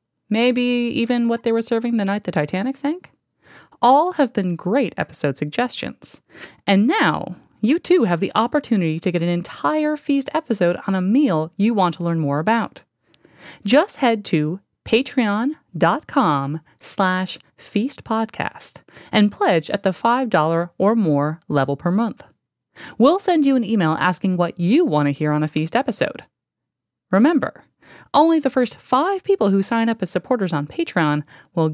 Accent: American